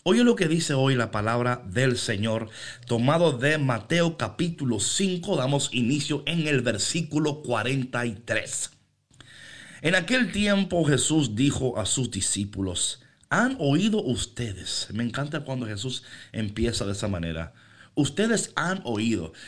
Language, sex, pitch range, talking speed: Spanish, male, 120-180 Hz, 130 wpm